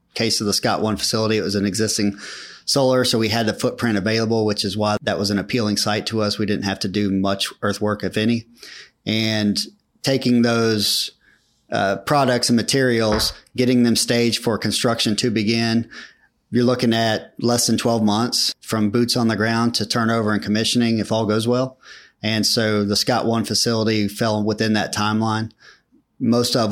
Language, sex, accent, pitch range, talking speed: English, male, American, 100-115 Hz, 185 wpm